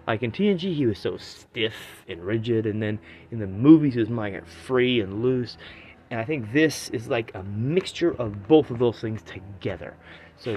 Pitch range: 105-130 Hz